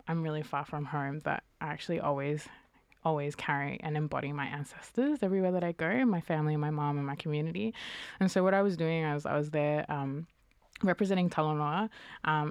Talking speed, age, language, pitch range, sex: 190 wpm, 20-39, English, 150-175 Hz, female